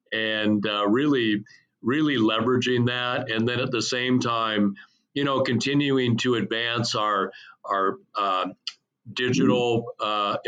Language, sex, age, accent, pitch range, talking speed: English, male, 50-69, American, 105-120 Hz, 125 wpm